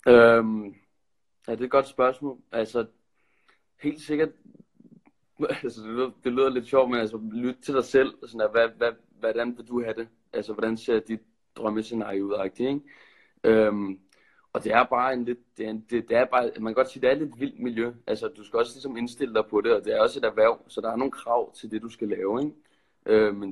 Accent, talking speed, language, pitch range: native, 205 wpm, Danish, 105-125 Hz